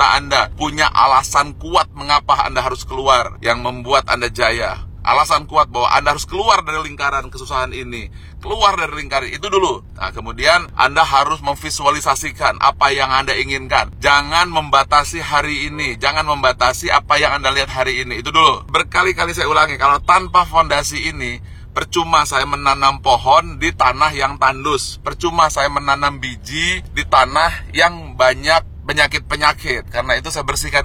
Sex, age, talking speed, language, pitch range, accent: male, 30-49, 150 wpm, Indonesian, 120-145 Hz, native